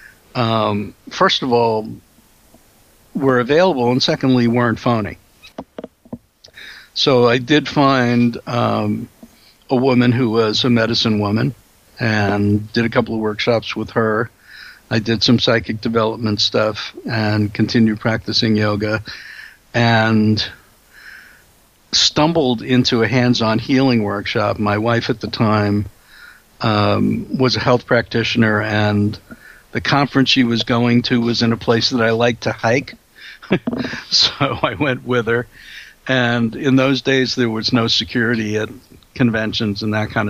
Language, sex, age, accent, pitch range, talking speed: English, male, 60-79, American, 110-130 Hz, 135 wpm